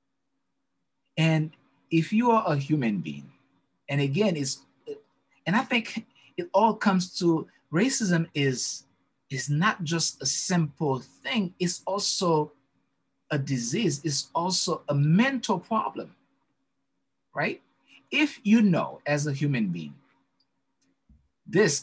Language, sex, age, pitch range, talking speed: English, male, 50-69, 145-200 Hz, 120 wpm